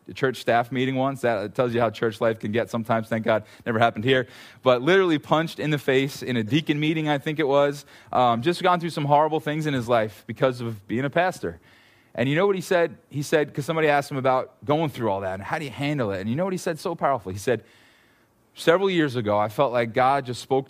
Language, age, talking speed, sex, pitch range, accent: English, 30-49, 260 wpm, male, 115-150 Hz, American